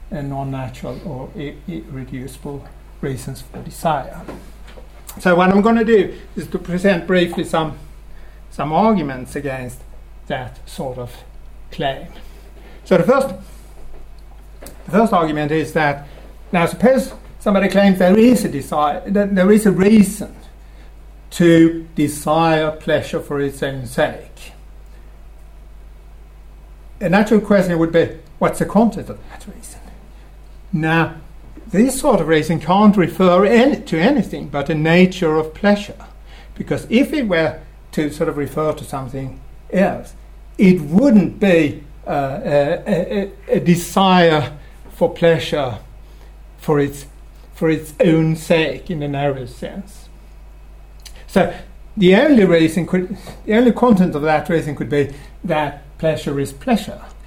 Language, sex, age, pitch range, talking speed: English, male, 60-79, 145-195 Hz, 135 wpm